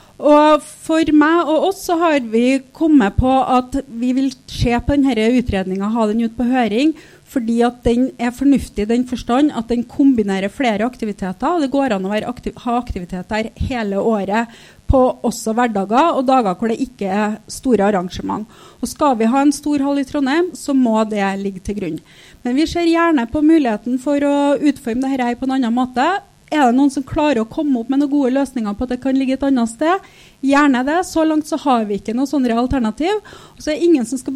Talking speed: 210 wpm